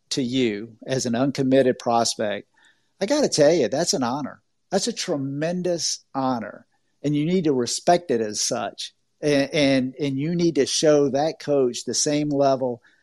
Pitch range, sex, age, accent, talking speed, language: 125-155 Hz, male, 50-69, American, 175 wpm, English